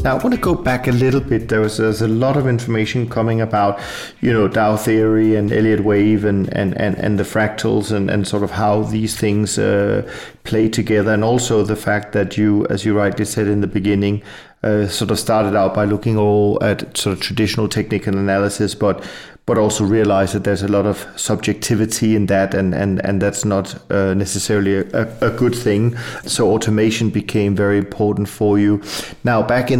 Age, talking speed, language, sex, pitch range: 40-59, 195 wpm, English, male, 105-115 Hz